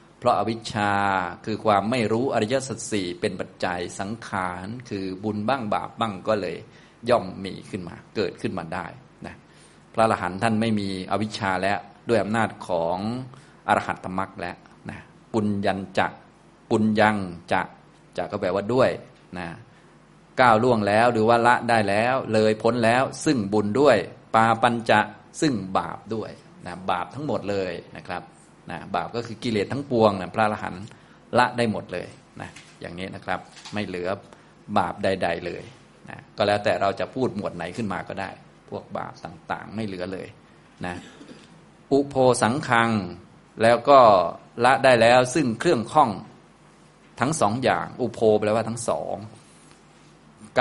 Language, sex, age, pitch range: Thai, male, 20-39, 100-120 Hz